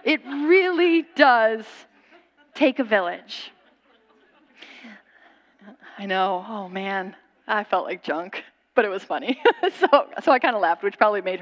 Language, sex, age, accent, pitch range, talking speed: English, female, 30-49, American, 210-295 Hz, 140 wpm